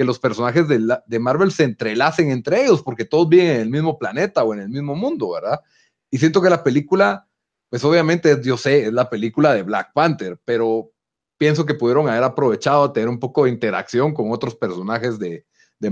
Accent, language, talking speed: Mexican, Spanish, 215 wpm